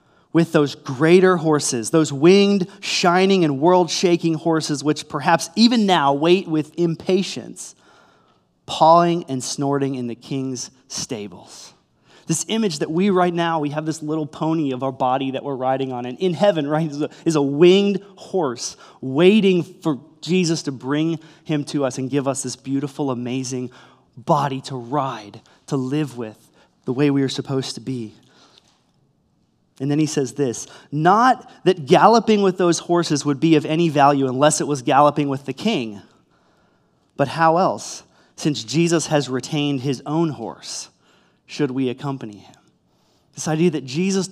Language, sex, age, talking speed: English, male, 30-49, 160 wpm